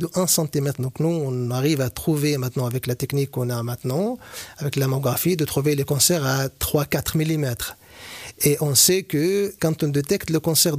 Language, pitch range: French, 135-160 Hz